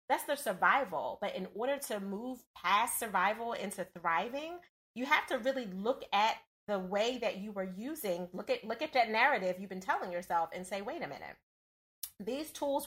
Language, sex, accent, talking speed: English, female, American, 190 wpm